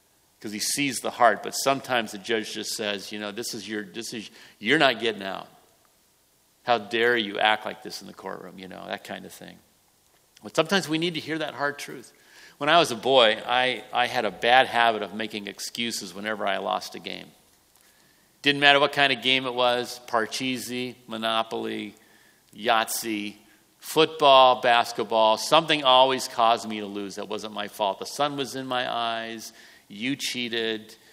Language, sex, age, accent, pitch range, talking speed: English, male, 50-69, American, 105-125 Hz, 185 wpm